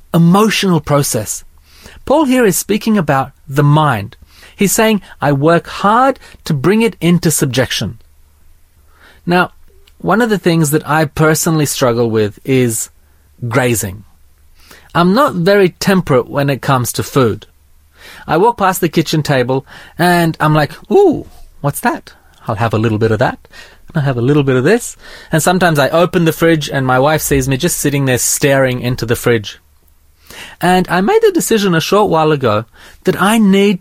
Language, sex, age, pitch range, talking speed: English, male, 30-49, 125-185 Hz, 170 wpm